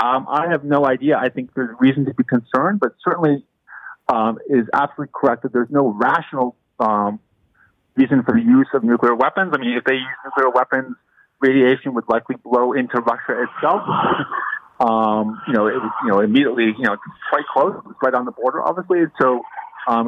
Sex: male